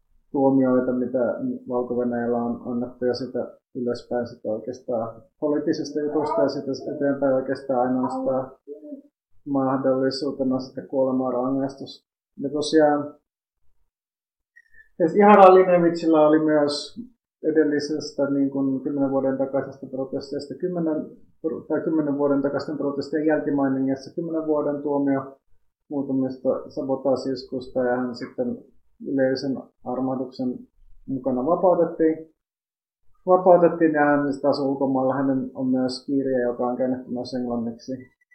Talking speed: 100 wpm